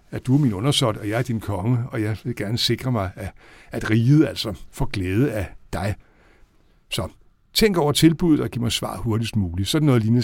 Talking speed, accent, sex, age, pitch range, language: 215 wpm, native, male, 60-79, 110-140 Hz, Danish